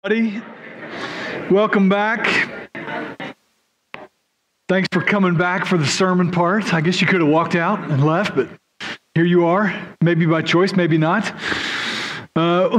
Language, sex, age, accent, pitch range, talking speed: English, male, 40-59, American, 170-200 Hz, 135 wpm